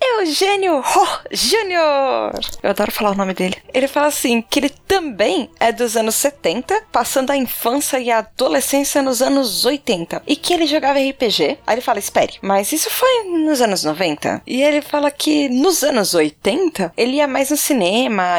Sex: female